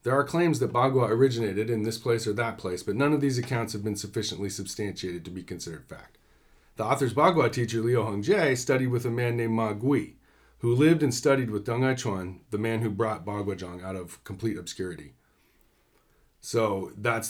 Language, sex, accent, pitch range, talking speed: English, male, American, 100-130 Hz, 200 wpm